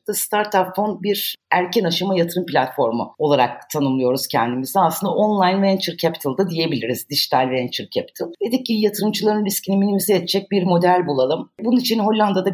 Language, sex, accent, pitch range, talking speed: Turkish, female, native, 160-205 Hz, 155 wpm